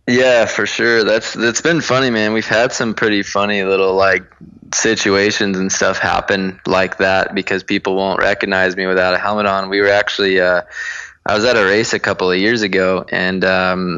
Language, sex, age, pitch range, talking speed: English, male, 20-39, 95-105 Hz, 200 wpm